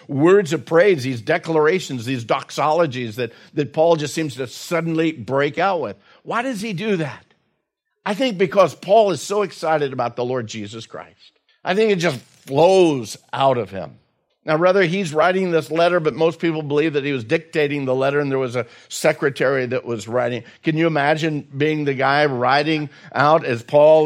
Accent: American